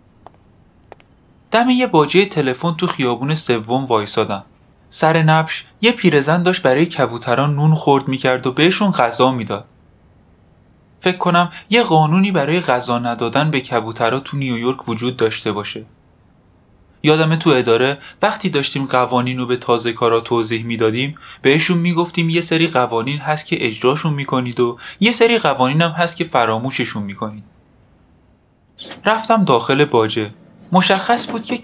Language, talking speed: Persian, 140 wpm